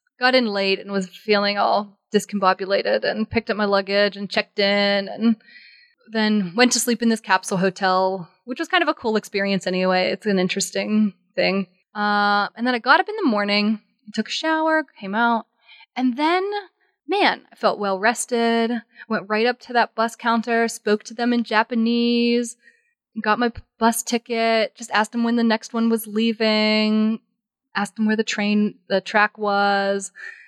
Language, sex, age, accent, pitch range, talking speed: English, female, 20-39, American, 200-240 Hz, 180 wpm